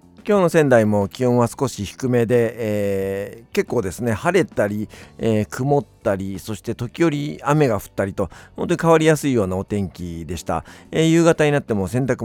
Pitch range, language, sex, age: 90-140 Hz, Japanese, male, 50-69